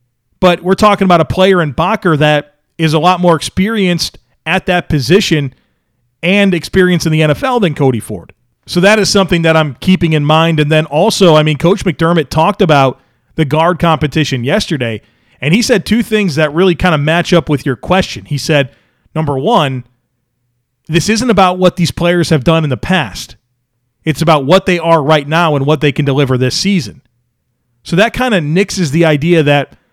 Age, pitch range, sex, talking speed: 40-59, 145-180 Hz, male, 195 wpm